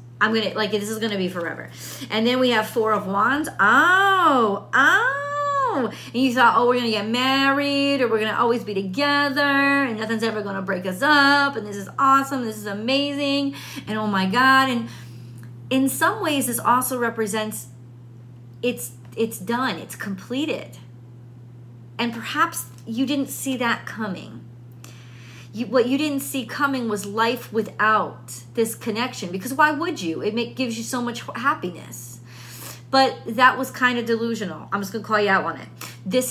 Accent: American